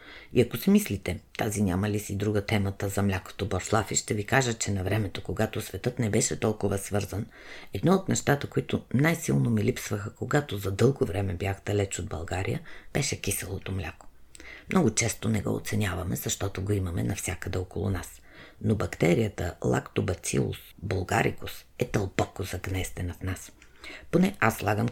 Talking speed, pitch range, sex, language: 160 wpm, 95-110 Hz, female, Bulgarian